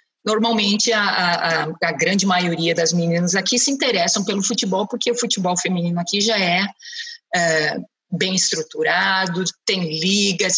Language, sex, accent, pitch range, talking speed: Portuguese, female, Brazilian, 170-215 Hz, 140 wpm